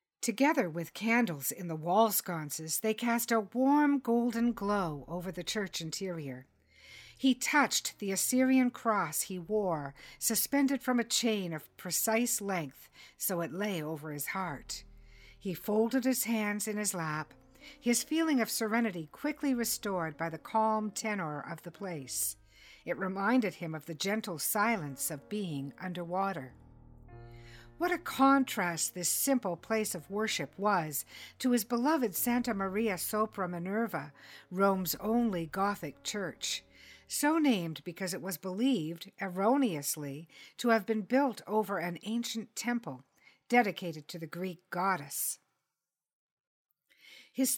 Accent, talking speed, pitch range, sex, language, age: American, 135 wpm, 165-235 Hz, female, English, 60-79